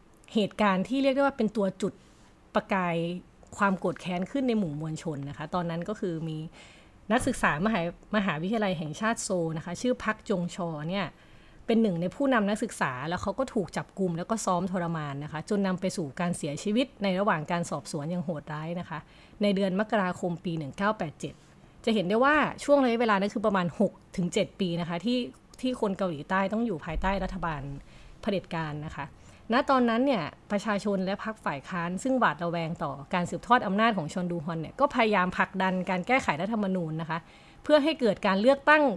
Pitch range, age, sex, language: 170-220 Hz, 20-39, female, Thai